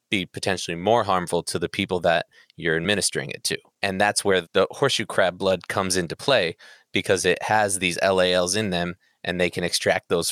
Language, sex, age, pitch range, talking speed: English, male, 20-39, 90-100 Hz, 200 wpm